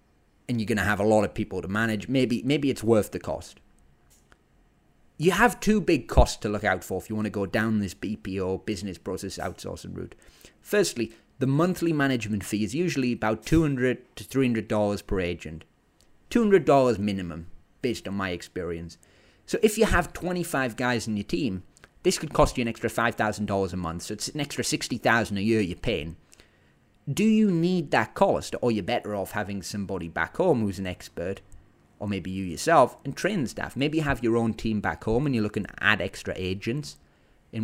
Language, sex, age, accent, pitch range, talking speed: English, male, 30-49, British, 95-125 Hz, 195 wpm